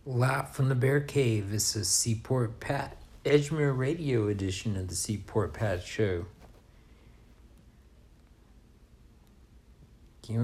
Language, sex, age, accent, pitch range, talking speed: English, male, 60-79, American, 95-115 Hz, 105 wpm